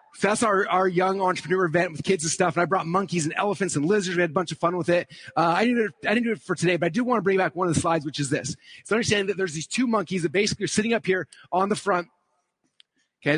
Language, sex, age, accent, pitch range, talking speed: English, male, 30-49, American, 165-210 Hz, 300 wpm